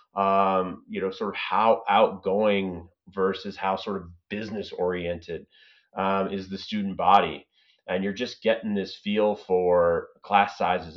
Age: 30-49